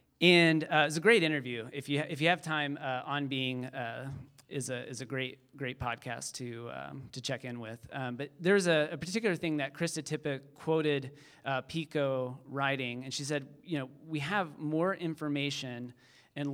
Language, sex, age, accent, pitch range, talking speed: English, male, 30-49, American, 130-150 Hz, 190 wpm